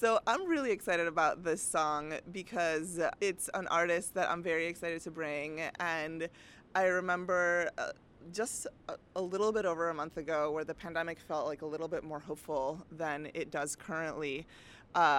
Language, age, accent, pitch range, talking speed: English, 20-39, American, 155-180 Hz, 170 wpm